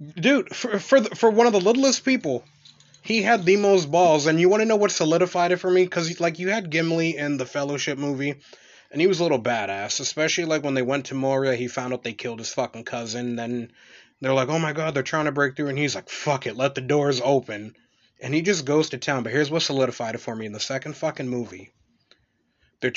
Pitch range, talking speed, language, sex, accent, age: 125-160 Hz, 245 wpm, English, male, American, 30-49